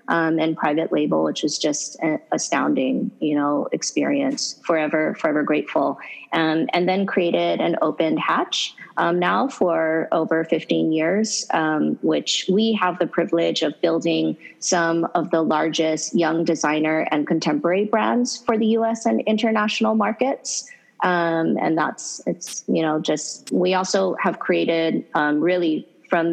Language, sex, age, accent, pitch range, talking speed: English, female, 30-49, American, 155-215 Hz, 150 wpm